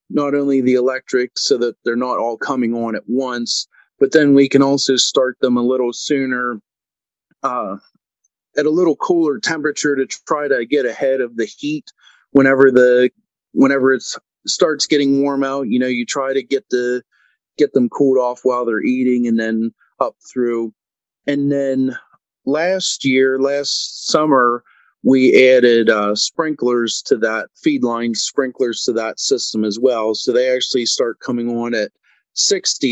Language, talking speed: English, 165 wpm